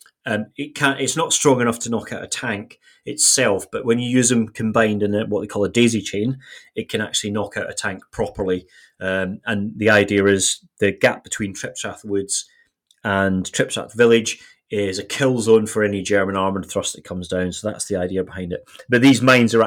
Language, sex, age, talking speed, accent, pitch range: English, male, 30-49, 215 wpm, British, 100-115 Hz